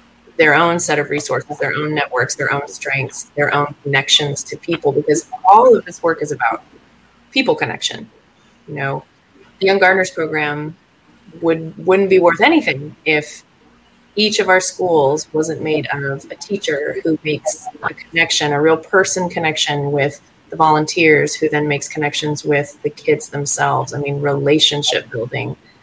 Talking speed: 160 wpm